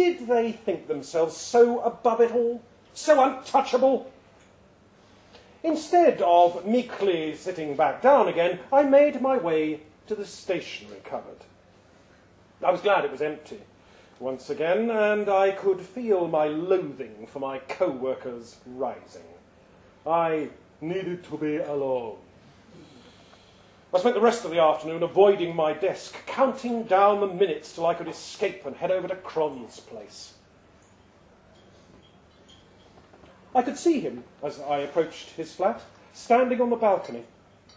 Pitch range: 145-220 Hz